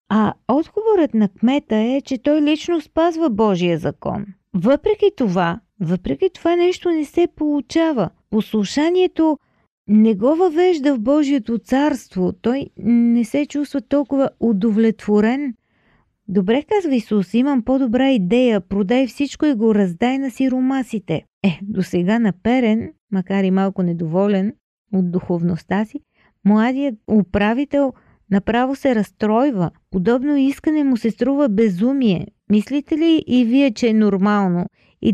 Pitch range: 195-270 Hz